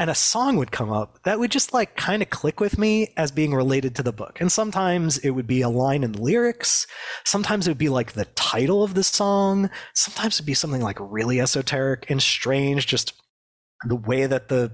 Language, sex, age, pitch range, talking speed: English, male, 30-49, 115-170 Hz, 225 wpm